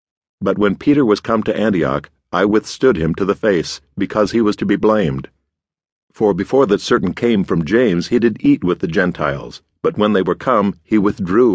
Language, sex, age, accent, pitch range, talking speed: English, male, 50-69, American, 85-110 Hz, 205 wpm